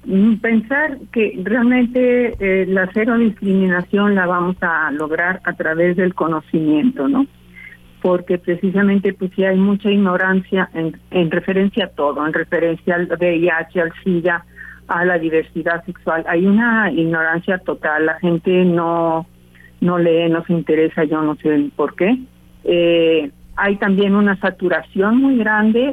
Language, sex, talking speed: Spanish, female, 140 wpm